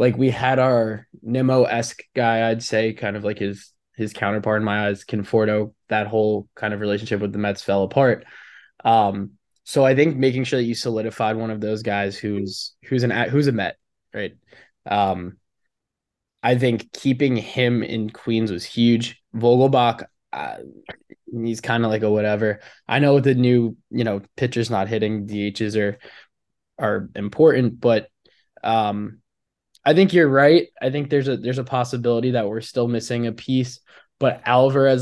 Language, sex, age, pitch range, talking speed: English, male, 20-39, 110-130 Hz, 170 wpm